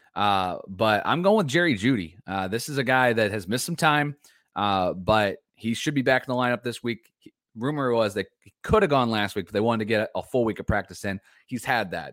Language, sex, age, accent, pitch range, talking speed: English, male, 30-49, American, 100-125 Hz, 260 wpm